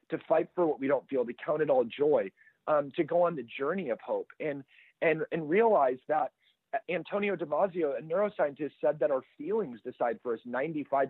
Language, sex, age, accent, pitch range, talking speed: English, male, 40-59, American, 130-180 Hz, 200 wpm